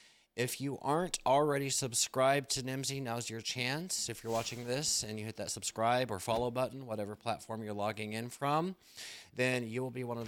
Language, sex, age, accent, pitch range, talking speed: English, male, 30-49, American, 95-125 Hz, 200 wpm